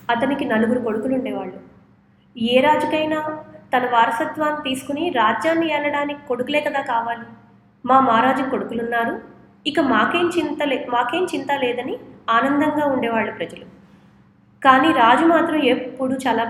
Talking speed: 115 wpm